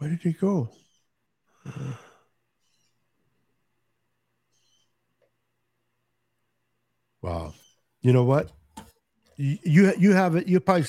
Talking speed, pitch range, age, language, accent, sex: 85 wpm, 115-150 Hz, 60-79, English, American, male